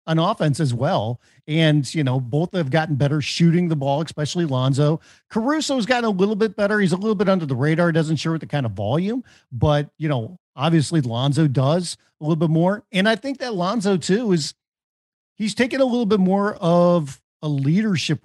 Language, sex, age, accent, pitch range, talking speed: English, male, 50-69, American, 140-185 Hz, 205 wpm